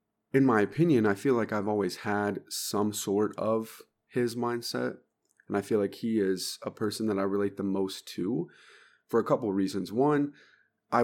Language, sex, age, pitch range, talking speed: English, male, 30-49, 95-110 Hz, 190 wpm